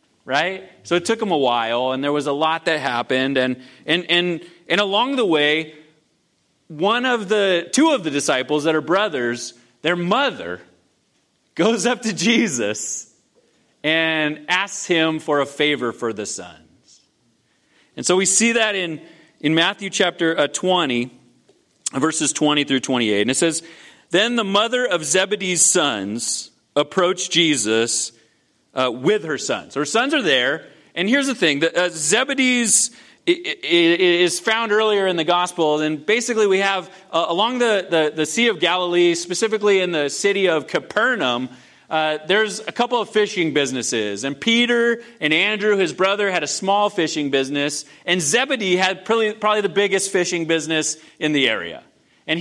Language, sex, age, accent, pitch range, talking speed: English, male, 30-49, American, 150-210 Hz, 160 wpm